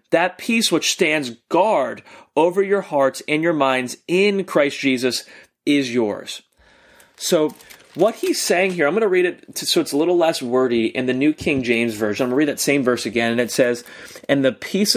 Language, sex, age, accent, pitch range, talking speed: English, male, 30-49, American, 125-170 Hz, 210 wpm